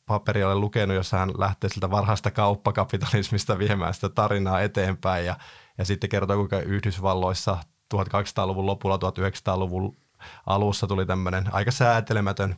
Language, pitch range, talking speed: Finnish, 95-105 Hz, 125 wpm